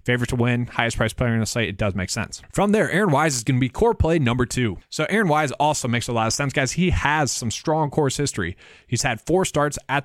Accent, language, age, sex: American, English, 20-39, male